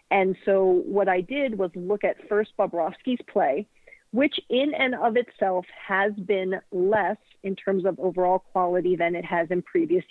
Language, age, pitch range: English, 40-59, 180-215 Hz